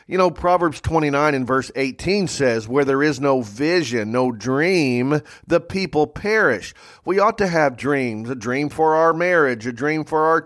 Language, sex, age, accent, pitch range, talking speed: English, male, 40-59, American, 135-165 Hz, 185 wpm